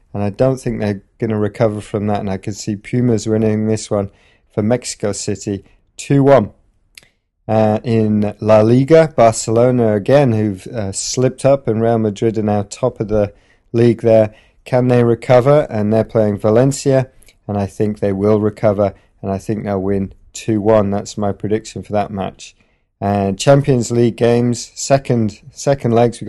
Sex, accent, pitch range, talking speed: male, British, 100-115 Hz, 170 wpm